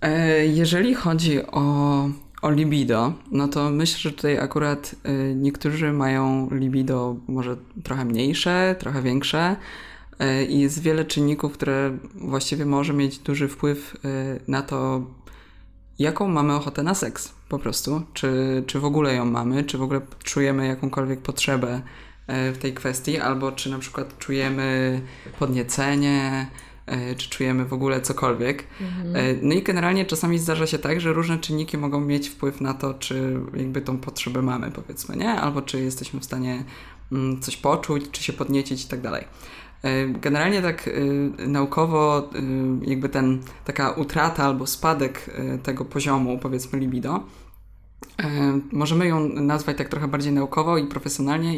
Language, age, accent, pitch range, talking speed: Polish, 20-39, native, 130-150 Hz, 140 wpm